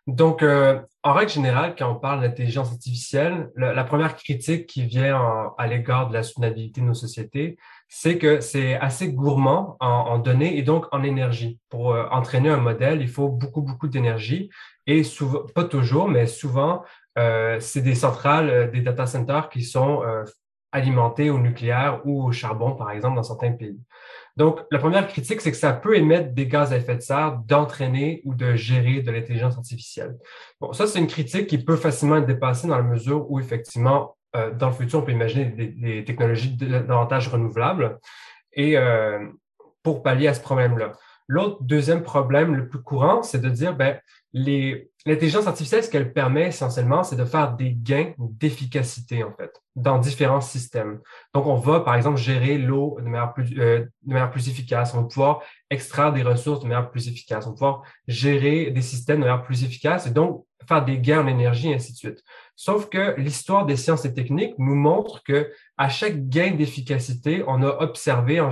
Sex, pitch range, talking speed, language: male, 120-150 Hz, 195 wpm, French